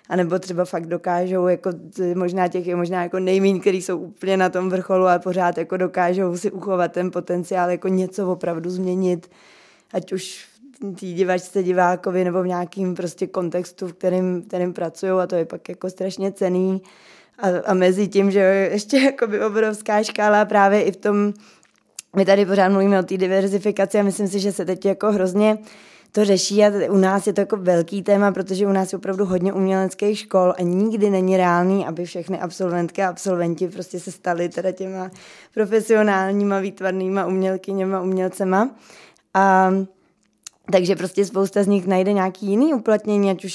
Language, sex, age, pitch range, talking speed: Czech, female, 20-39, 185-205 Hz, 175 wpm